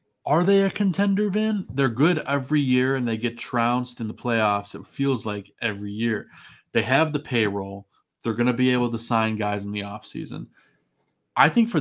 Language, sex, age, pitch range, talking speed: English, male, 20-39, 110-135 Hz, 200 wpm